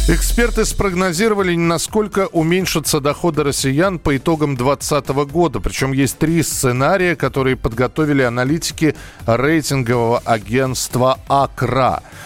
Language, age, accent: Russian, 40-59, native